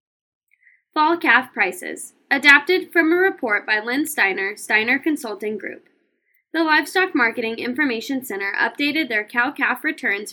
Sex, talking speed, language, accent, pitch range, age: female, 130 wpm, English, American, 215-290 Hz, 10-29